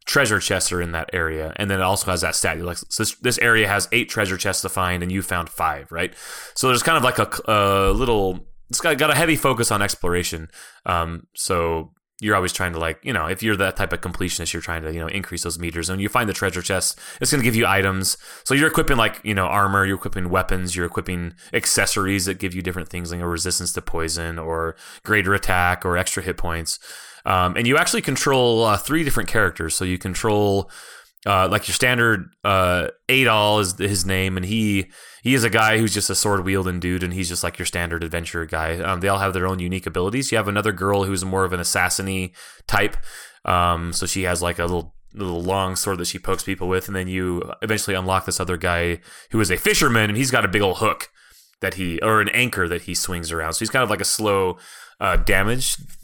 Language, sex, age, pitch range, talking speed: English, male, 20-39, 90-110 Hz, 240 wpm